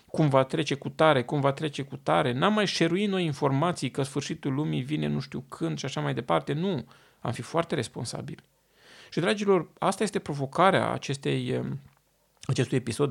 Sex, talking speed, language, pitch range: male, 180 wpm, Romanian, 135-170 Hz